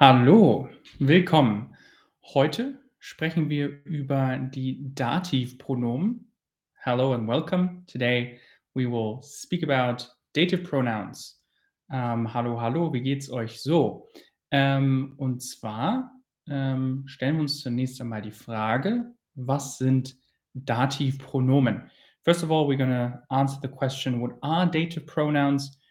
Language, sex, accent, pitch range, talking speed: German, male, German, 125-150 Hz, 110 wpm